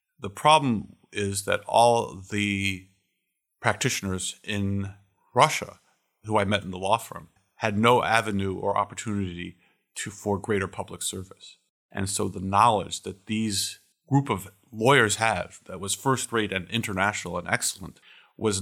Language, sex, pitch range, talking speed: English, male, 95-110 Hz, 145 wpm